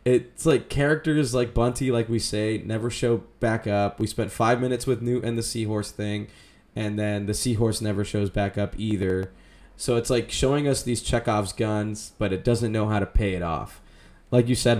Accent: American